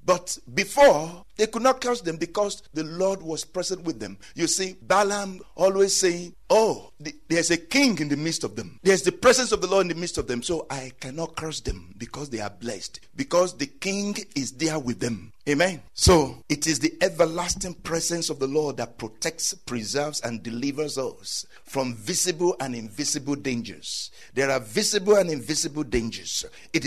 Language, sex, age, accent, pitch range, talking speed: English, male, 60-79, Nigerian, 140-185 Hz, 185 wpm